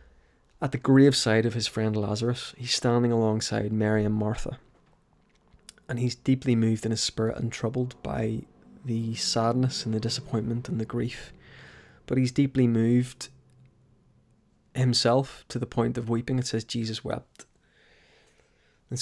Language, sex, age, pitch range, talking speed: English, male, 20-39, 115-130 Hz, 145 wpm